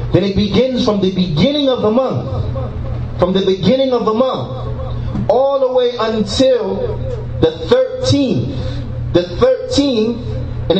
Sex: male